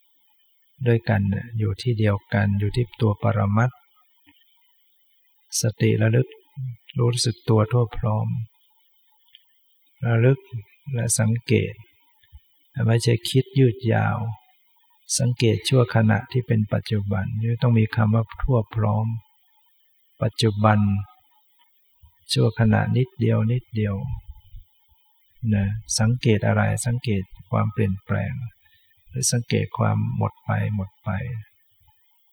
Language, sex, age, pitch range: English, male, 60-79, 110-130 Hz